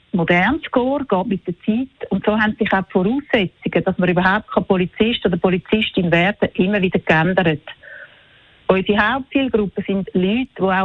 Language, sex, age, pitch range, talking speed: German, female, 40-59, 185-220 Hz, 165 wpm